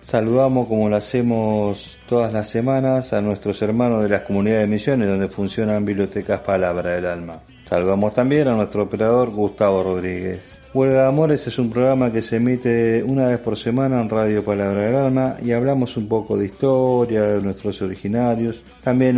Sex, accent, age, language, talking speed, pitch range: male, Argentinian, 40-59, Spanish, 170 wpm, 100-120 Hz